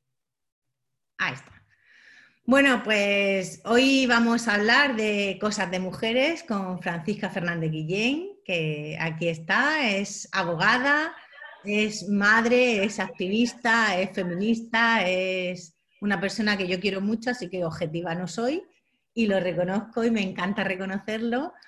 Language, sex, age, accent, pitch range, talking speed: Spanish, female, 30-49, Spanish, 190-235 Hz, 125 wpm